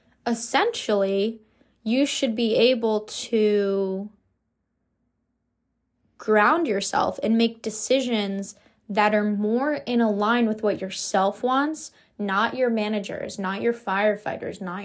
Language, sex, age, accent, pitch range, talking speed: English, female, 10-29, American, 200-235 Hz, 110 wpm